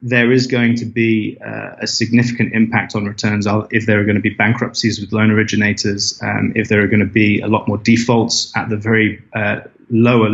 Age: 20-39